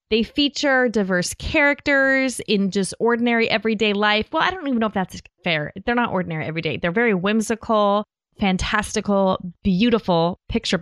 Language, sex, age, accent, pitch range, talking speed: English, female, 20-39, American, 180-235 Hz, 150 wpm